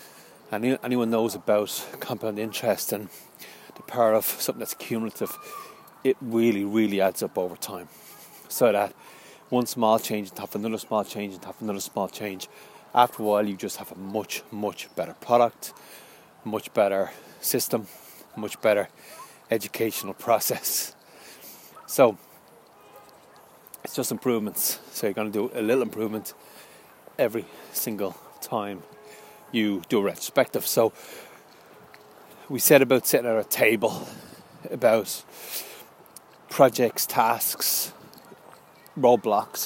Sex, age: male, 30-49